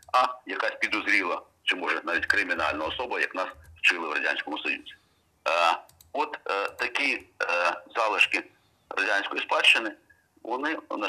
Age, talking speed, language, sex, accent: 40-59, 130 wpm, Ukrainian, male, native